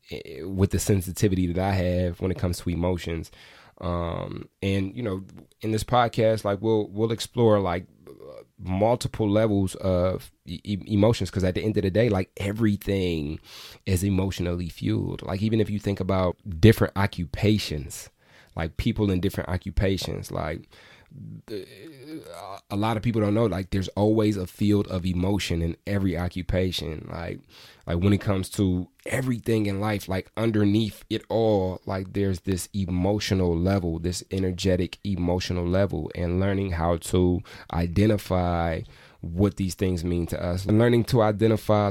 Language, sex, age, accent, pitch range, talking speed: English, male, 20-39, American, 90-105 Hz, 150 wpm